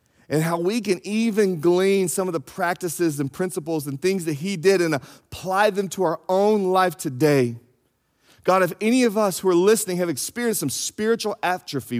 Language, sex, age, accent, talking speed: English, male, 40-59, American, 190 wpm